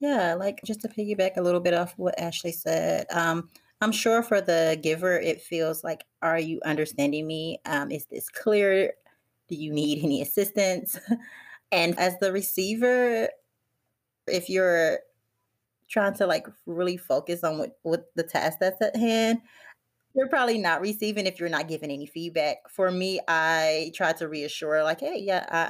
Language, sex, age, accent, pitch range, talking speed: English, female, 30-49, American, 160-200 Hz, 175 wpm